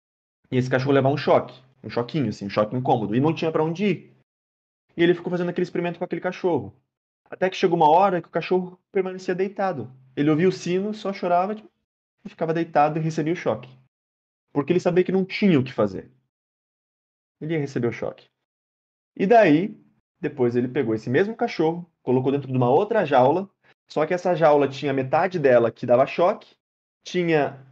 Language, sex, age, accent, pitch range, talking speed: Portuguese, male, 20-39, Brazilian, 120-175 Hz, 195 wpm